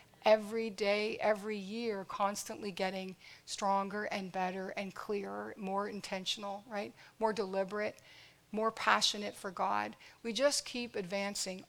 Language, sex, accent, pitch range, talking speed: English, female, American, 190-225 Hz, 125 wpm